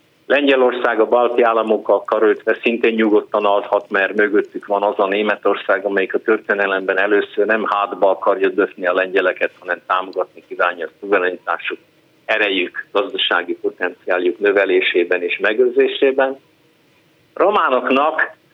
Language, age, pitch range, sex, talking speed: Hungarian, 50-69, 110-160 Hz, male, 115 wpm